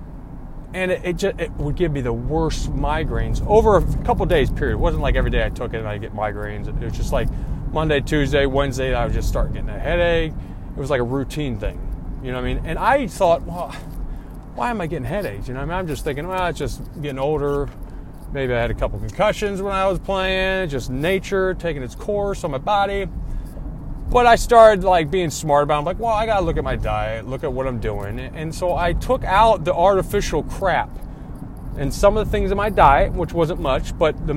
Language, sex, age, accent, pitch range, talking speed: English, male, 30-49, American, 130-180 Hz, 245 wpm